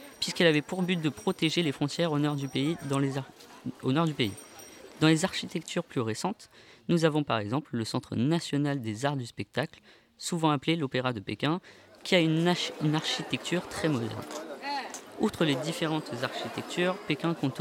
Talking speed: 160 wpm